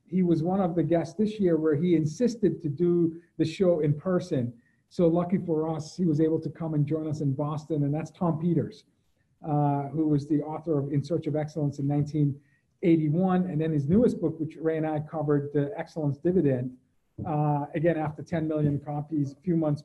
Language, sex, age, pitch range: English, male, 50-69, 150-175 Hz